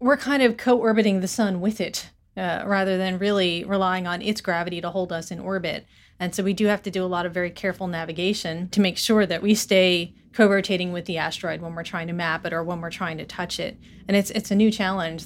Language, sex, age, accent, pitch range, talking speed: English, female, 30-49, American, 180-215 Hz, 250 wpm